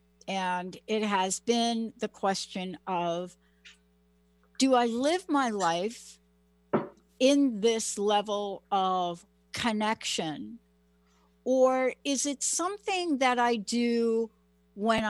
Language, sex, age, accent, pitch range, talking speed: English, female, 60-79, American, 160-235 Hz, 100 wpm